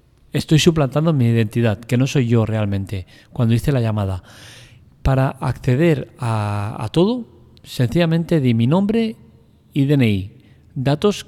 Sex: male